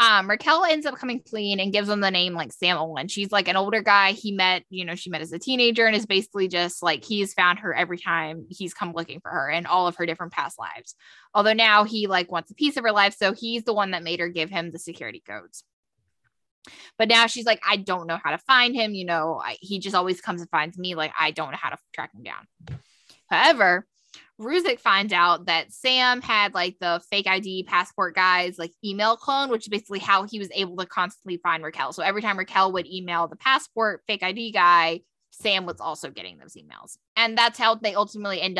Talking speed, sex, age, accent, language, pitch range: 235 wpm, female, 20-39, American, English, 175-215 Hz